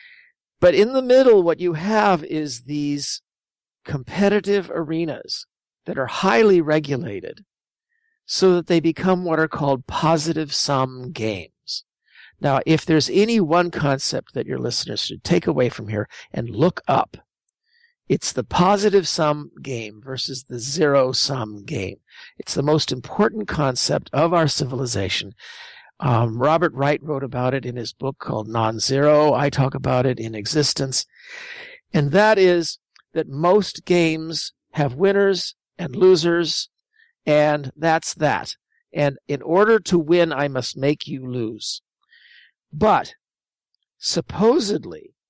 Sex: male